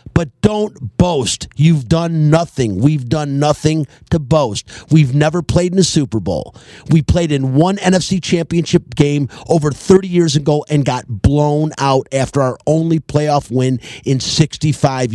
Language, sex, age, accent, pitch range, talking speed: English, male, 50-69, American, 150-220 Hz, 160 wpm